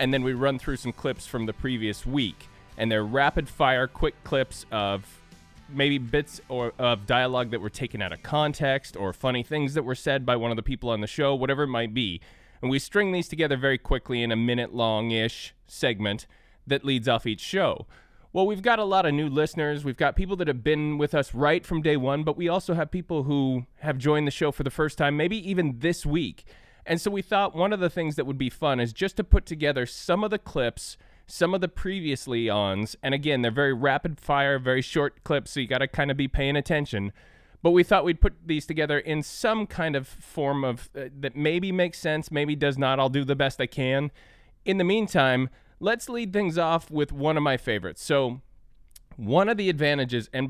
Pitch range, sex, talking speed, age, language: 125-155 Hz, male, 230 wpm, 20-39, English